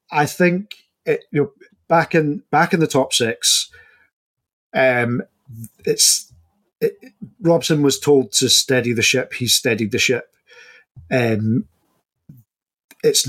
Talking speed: 130 wpm